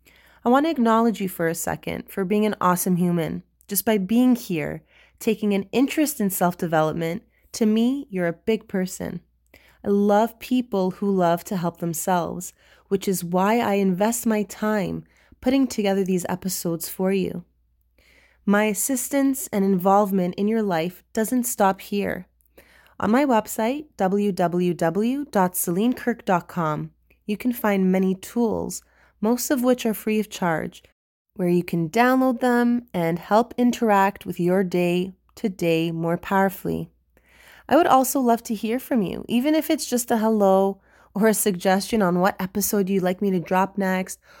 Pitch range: 180-225 Hz